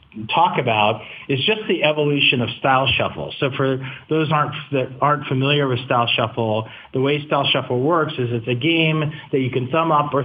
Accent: American